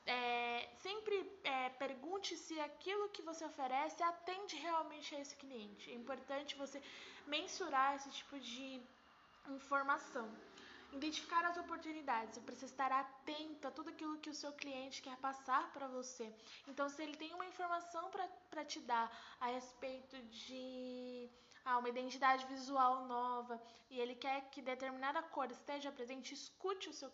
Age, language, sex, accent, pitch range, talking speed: 10-29, Portuguese, female, Brazilian, 250-295 Hz, 150 wpm